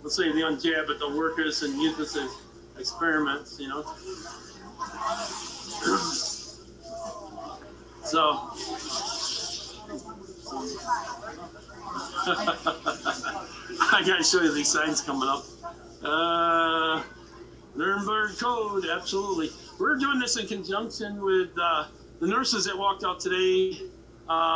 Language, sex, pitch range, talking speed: English, male, 165-240 Hz, 105 wpm